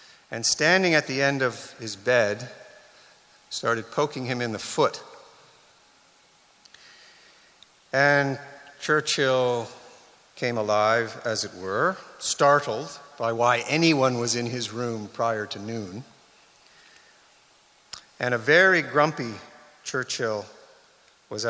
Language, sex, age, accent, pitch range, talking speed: English, male, 50-69, American, 120-165 Hz, 105 wpm